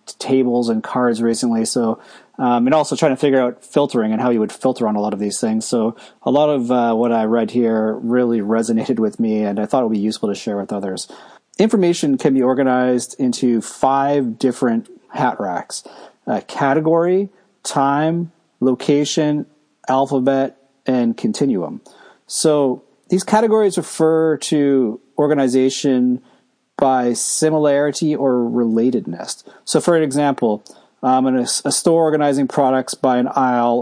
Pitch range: 120-145 Hz